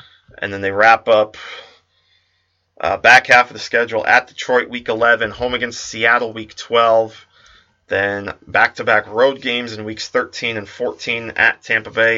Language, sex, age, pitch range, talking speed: English, male, 20-39, 100-125 Hz, 160 wpm